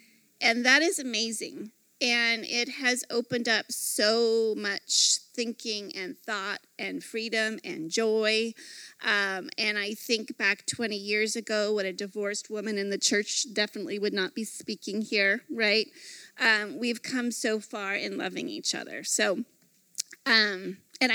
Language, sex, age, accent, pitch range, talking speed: English, female, 30-49, American, 210-255 Hz, 150 wpm